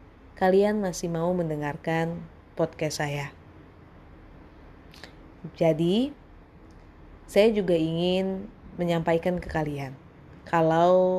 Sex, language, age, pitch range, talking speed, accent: female, Indonesian, 20-39, 155-180 Hz, 75 wpm, native